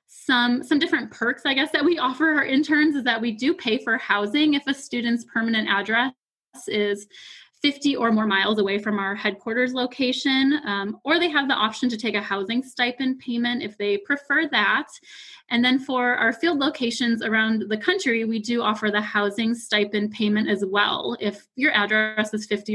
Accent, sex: American, female